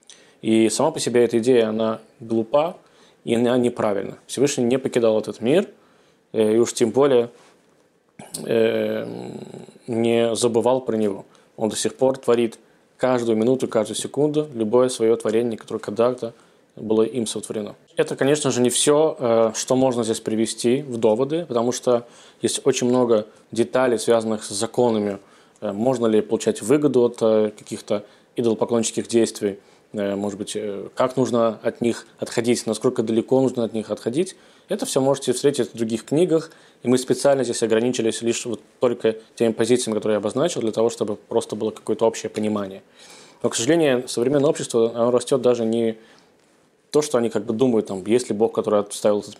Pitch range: 110-125 Hz